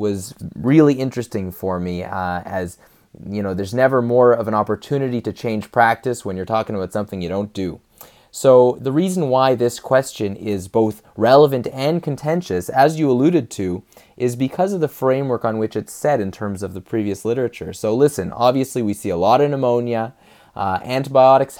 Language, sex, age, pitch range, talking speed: English, male, 20-39, 95-130 Hz, 185 wpm